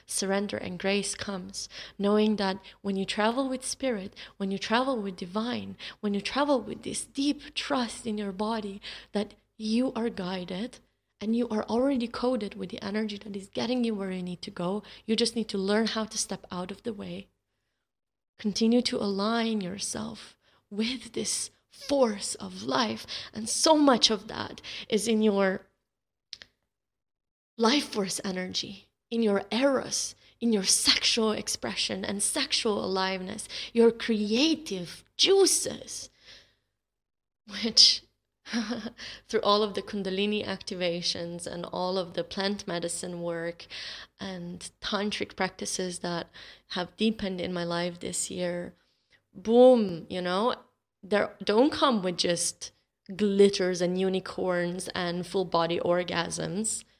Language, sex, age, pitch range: English, female, 20-39, 185-230 Hz